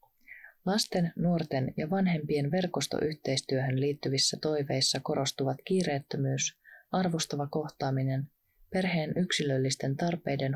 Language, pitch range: Finnish, 135-170 Hz